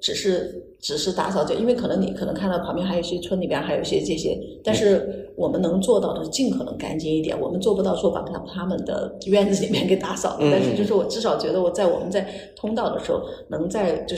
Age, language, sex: 30-49, Chinese, female